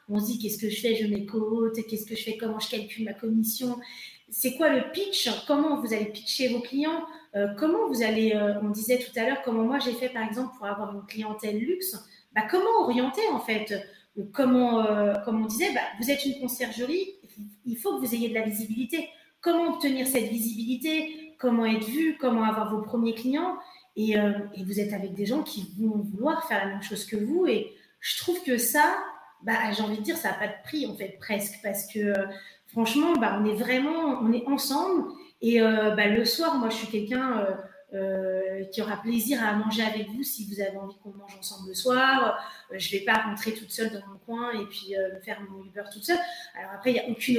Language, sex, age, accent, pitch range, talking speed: French, female, 30-49, French, 210-270 Hz, 230 wpm